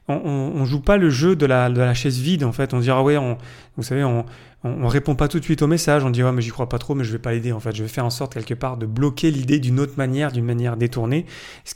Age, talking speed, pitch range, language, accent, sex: 30-49, 325 wpm, 120-150 Hz, French, French, male